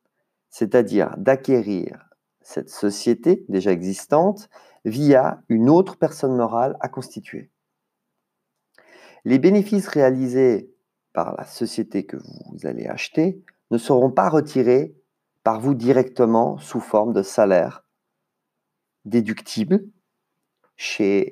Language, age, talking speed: French, 40-59, 100 wpm